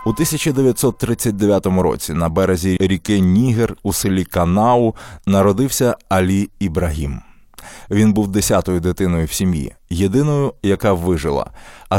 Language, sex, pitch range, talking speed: Ukrainian, male, 95-115 Hz, 115 wpm